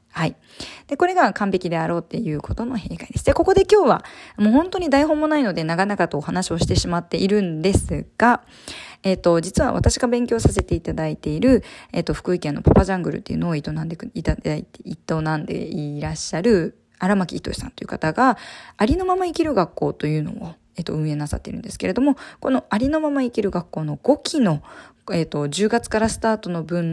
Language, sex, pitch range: Japanese, female, 165-255 Hz